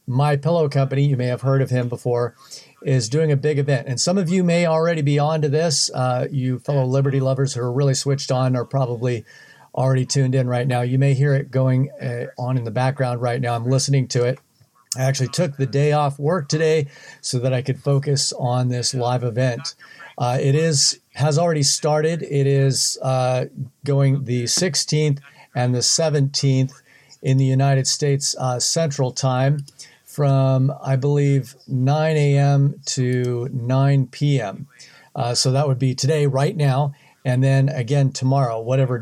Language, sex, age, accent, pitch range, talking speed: English, male, 50-69, American, 130-145 Hz, 180 wpm